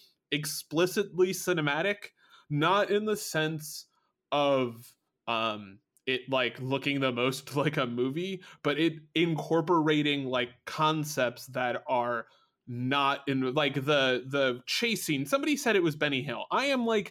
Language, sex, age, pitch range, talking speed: English, male, 20-39, 135-185 Hz, 135 wpm